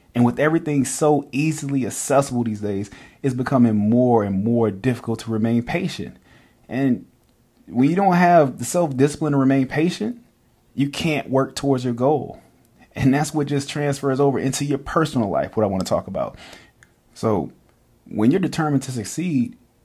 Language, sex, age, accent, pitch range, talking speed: English, male, 30-49, American, 110-135 Hz, 165 wpm